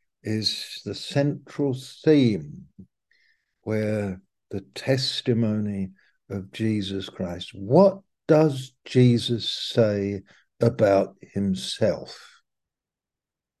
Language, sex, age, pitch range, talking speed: English, male, 60-79, 110-140 Hz, 70 wpm